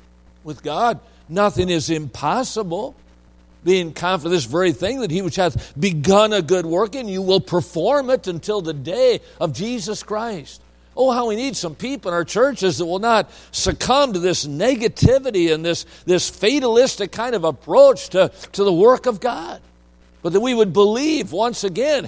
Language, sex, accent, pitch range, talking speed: English, male, American, 120-180 Hz, 175 wpm